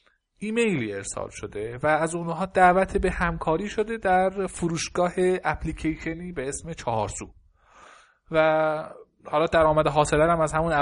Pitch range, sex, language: 125-175 Hz, male, Persian